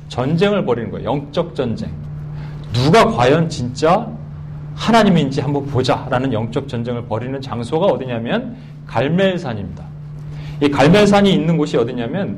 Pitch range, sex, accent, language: 130-170 Hz, male, native, Korean